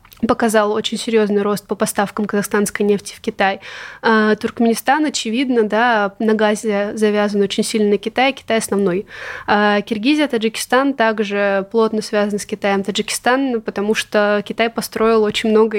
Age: 20-39